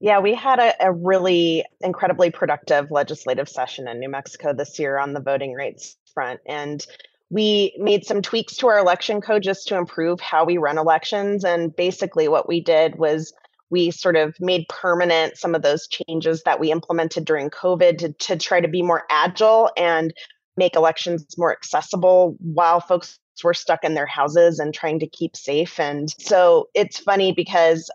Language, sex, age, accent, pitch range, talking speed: English, female, 20-39, American, 165-205 Hz, 180 wpm